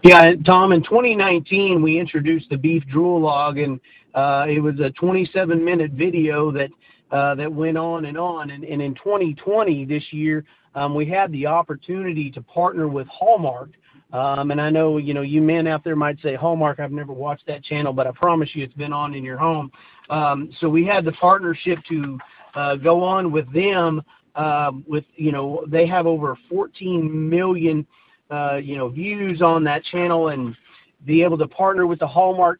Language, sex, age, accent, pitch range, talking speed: English, male, 40-59, American, 150-175 Hz, 190 wpm